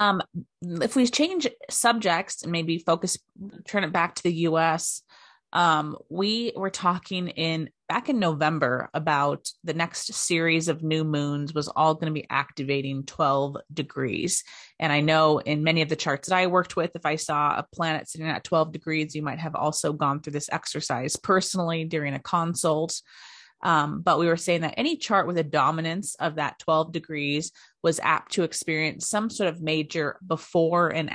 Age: 30-49